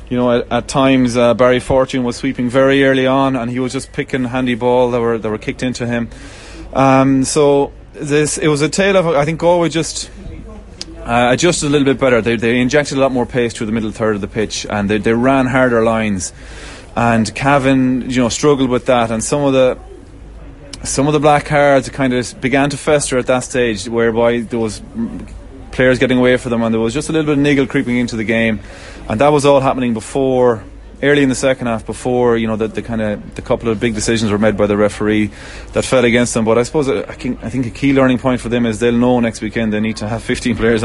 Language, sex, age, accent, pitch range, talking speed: English, male, 20-39, Irish, 115-135 Hz, 240 wpm